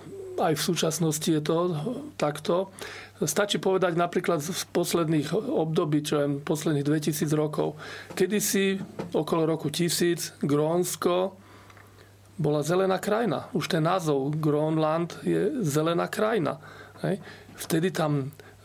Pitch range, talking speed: 150-185 Hz, 110 wpm